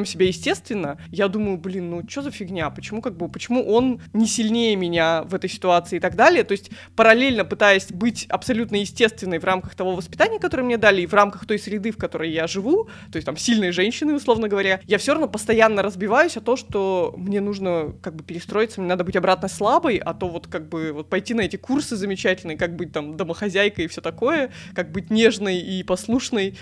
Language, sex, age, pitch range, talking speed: Russian, female, 20-39, 185-230 Hz, 210 wpm